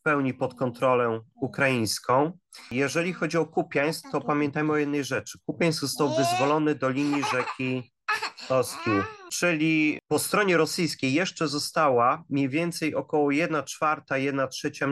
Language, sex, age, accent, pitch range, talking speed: Polish, male, 30-49, native, 130-155 Hz, 125 wpm